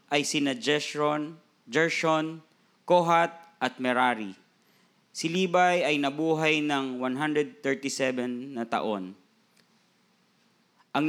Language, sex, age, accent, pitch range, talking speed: Filipino, male, 20-39, native, 135-175 Hz, 85 wpm